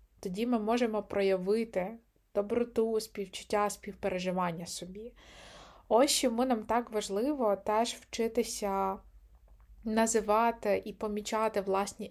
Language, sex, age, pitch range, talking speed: Ukrainian, female, 20-39, 200-245 Hz, 95 wpm